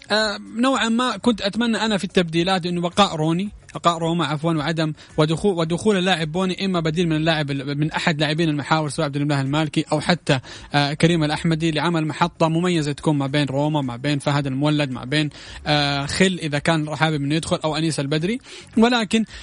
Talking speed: 185 wpm